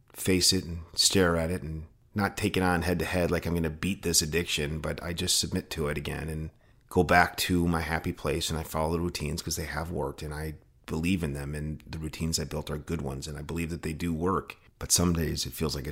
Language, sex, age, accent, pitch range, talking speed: English, male, 40-59, American, 75-85 Hz, 265 wpm